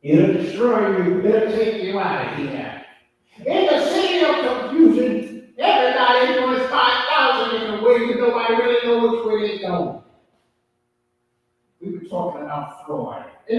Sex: male